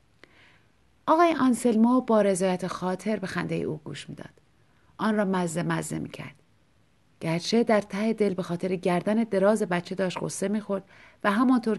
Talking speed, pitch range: 160 wpm, 175-220 Hz